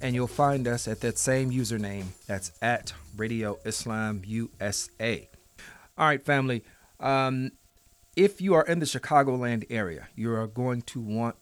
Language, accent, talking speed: English, American, 150 wpm